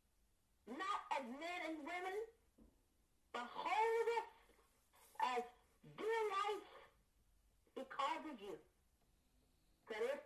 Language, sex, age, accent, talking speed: English, female, 50-69, American, 95 wpm